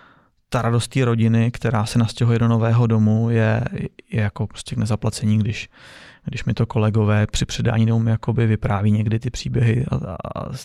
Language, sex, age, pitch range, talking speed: Czech, male, 20-39, 110-130 Hz, 175 wpm